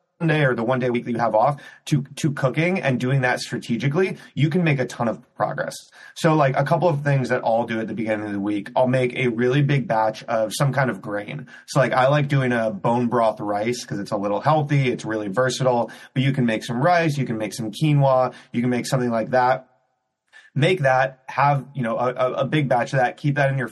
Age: 30-49